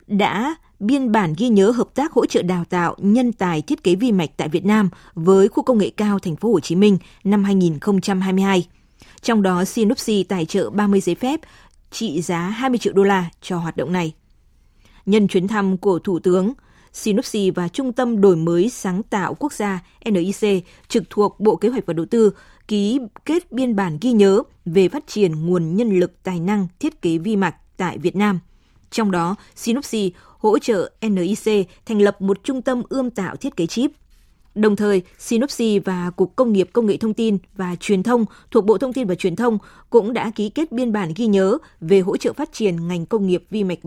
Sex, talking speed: female, 205 wpm